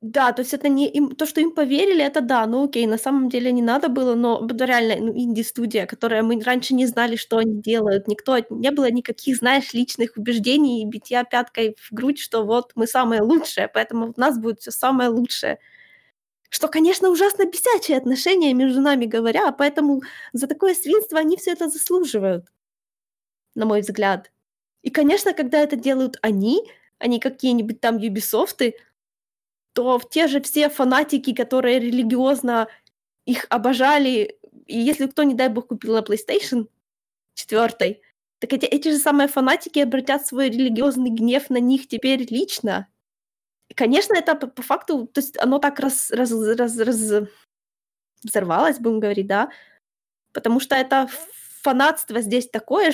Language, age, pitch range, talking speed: Ukrainian, 20-39, 230-285 Hz, 160 wpm